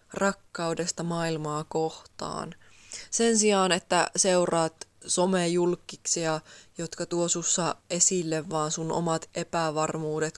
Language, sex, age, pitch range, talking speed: Finnish, female, 20-39, 160-185 Hz, 100 wpm